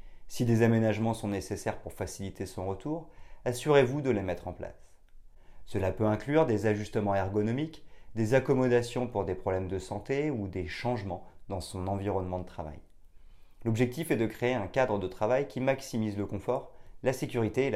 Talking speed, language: 170 wpm, French